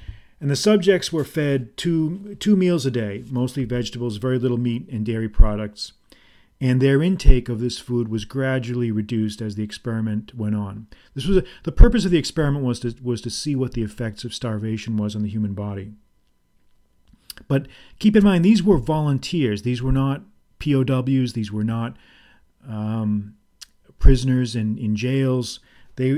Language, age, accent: English, 40-59, American